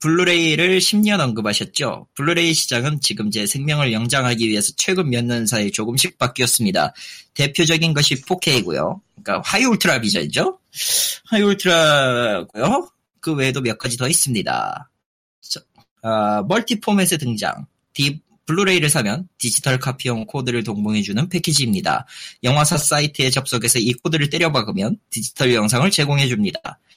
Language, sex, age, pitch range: Korean, male, 20-39, 120-175 Hz